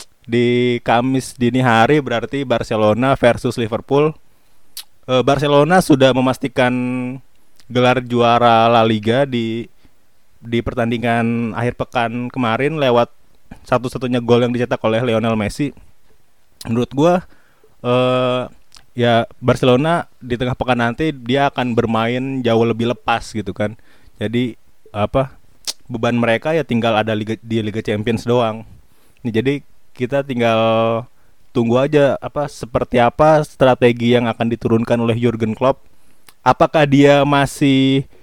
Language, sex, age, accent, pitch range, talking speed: Indonesian, male, 20-39, native, 120-140 Hz, 120 wpm